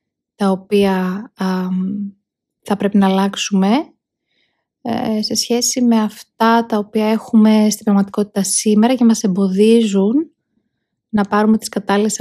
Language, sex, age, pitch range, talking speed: Greek, female, 20-39, 195-225 Hz, 125 wpm